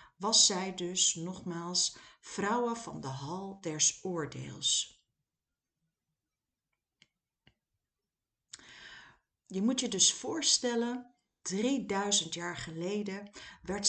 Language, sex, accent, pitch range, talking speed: Dutch, female, Dutch, 165-225 Hz, 80 wpm